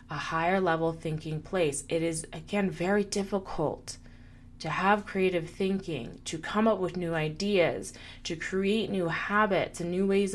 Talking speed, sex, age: 155 wpm, female, 20-39